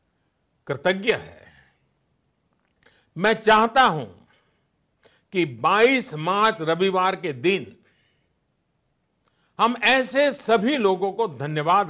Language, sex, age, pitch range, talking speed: English, male, 60-79, 165-220 Hz, 85 wpm